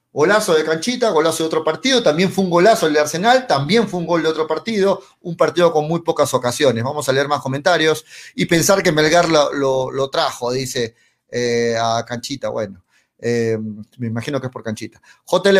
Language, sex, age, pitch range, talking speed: Spanish, male, 30-49, 145-195 Hz, 205 wpm